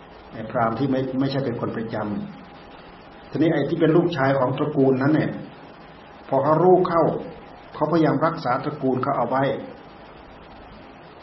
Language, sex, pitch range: Thai, male, 130-160 Hz